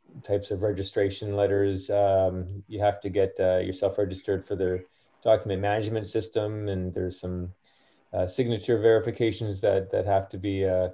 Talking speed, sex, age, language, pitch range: 160 wpm, male, 30-49, English, 95-115 Hz